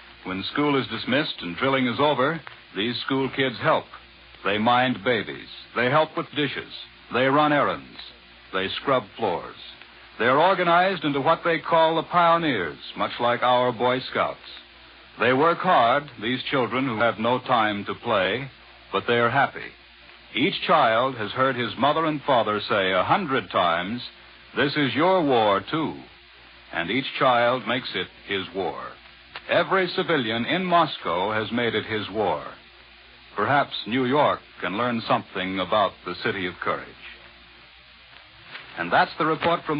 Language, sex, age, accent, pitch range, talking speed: English, male, 60-79, American, 120-155 Hz, 150 wpm